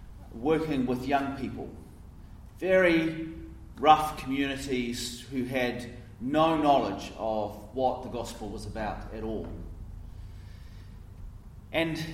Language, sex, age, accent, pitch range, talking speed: English, male, 30-49, Australian, 95-150 Hz, 100 wpm